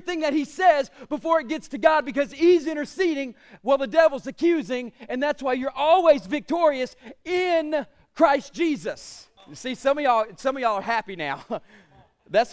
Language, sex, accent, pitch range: English, male, American, 250-295 Hz